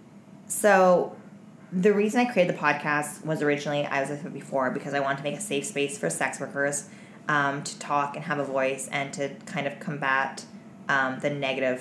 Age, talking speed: 20-39, 205 wpm